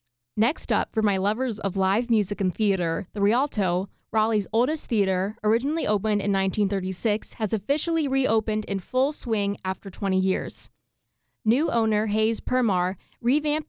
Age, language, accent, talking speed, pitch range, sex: 20-39, English, American, 145 wpm, 190-225 Hz, female